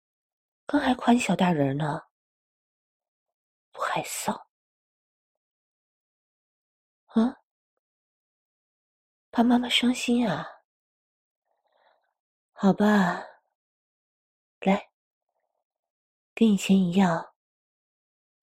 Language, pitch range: Chinese, 150-205 Hz